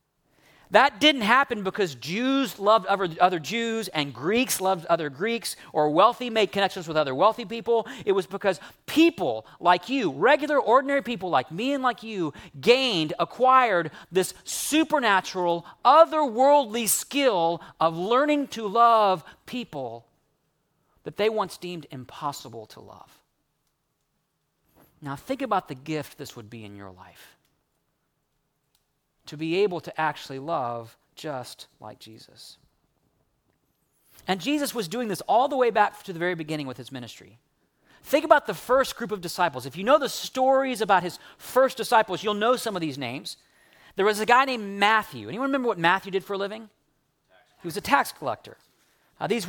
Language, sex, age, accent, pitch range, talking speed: English, male, 40-59, American, 160-250 Hz, 160 wpm